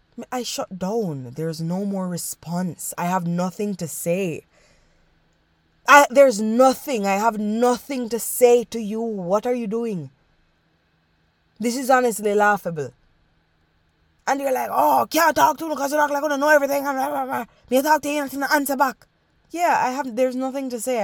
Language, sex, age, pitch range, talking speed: English, female, 20-39, 180-260 Hz, 145 wpm